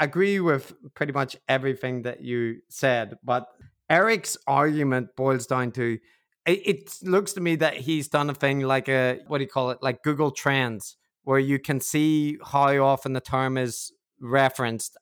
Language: English